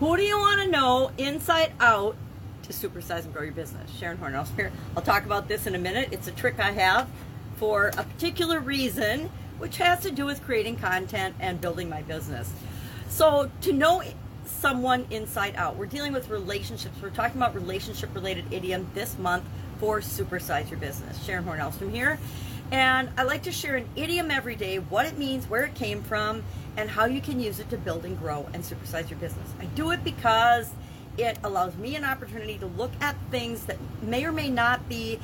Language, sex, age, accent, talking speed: English, female, 40-59, American, 200 wpm